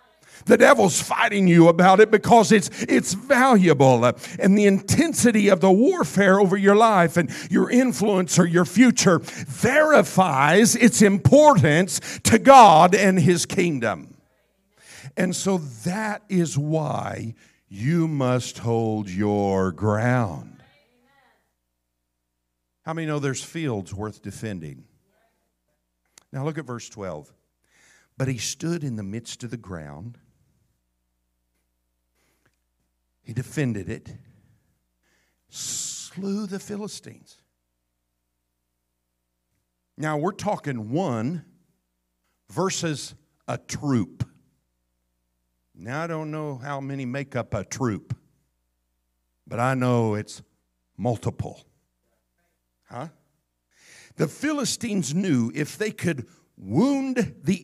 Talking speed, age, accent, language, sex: 105 wpm, 50-69, American, English, male